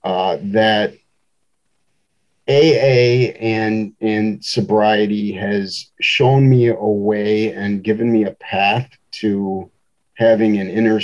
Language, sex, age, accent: English, male, 40-59, American